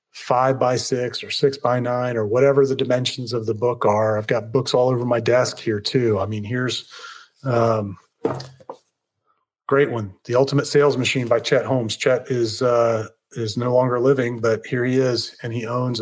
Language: English